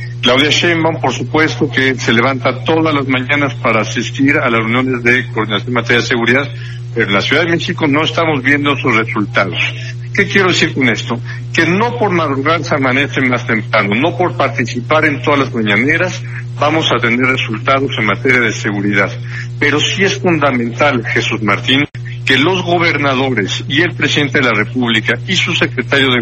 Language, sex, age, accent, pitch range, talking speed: Spanish, male, 60-79, Mexican, 120-145 Hz, 180 wpm